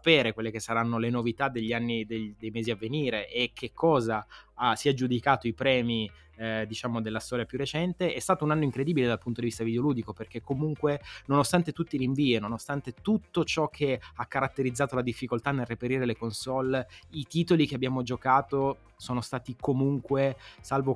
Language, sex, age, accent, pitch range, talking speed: Italian, male, 20-39, native, 115-140 Hz, 180 wpm